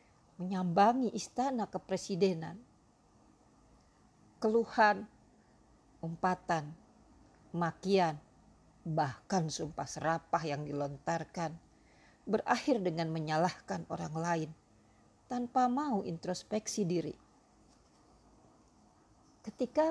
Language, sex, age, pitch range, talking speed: Indonesian, female, 50-69, 160-215 Hz, 65 wpm